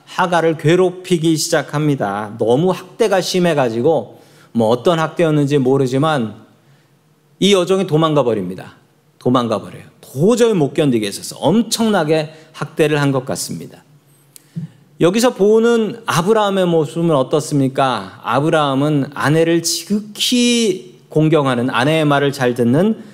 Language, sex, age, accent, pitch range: Korean, male, 40-59, native, 135-180 Hz